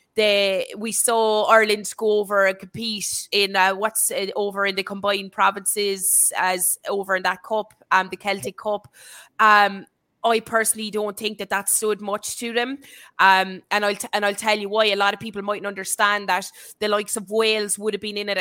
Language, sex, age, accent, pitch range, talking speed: English, female, 20-39, Irish, 195-220 Hz, 200 wpm